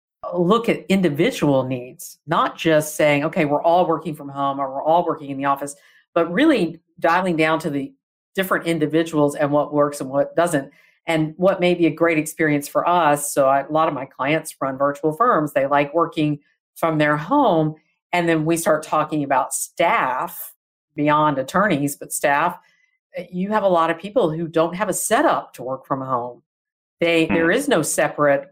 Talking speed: 185 wpm